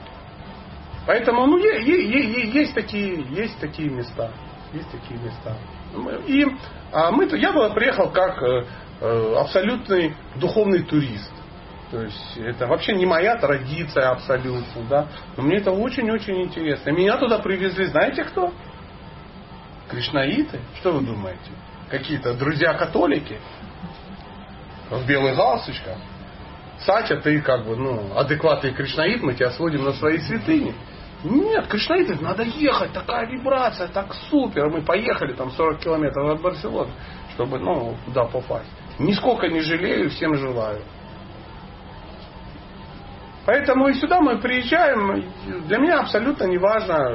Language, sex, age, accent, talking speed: Russian, male, 30-49, native, 115 wpm